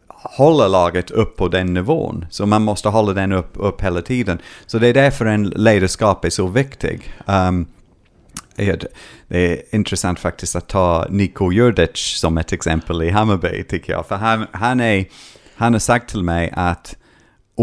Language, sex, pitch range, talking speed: Swedish, male, 85-110 Hz, 165 wpm